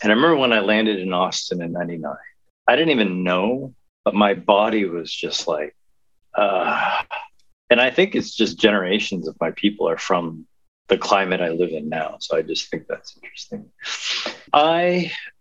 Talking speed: 175 wpm